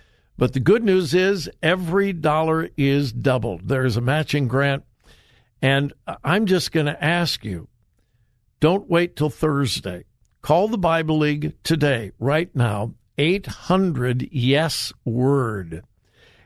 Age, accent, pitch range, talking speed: 60-79, American, 125-165 Hz, 120 wpm